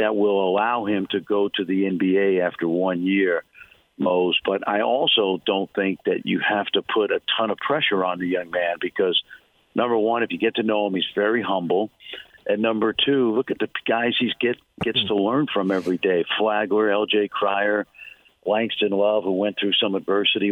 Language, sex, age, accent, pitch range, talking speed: English, male, 50-69, American, 95-105 Hz, 200 wpm